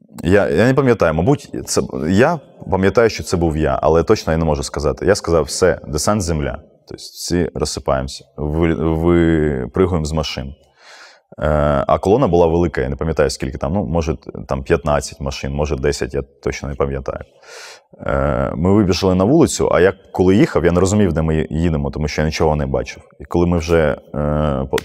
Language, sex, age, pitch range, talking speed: Russian, male, 20-39, 75-90 Hz, 190 wpm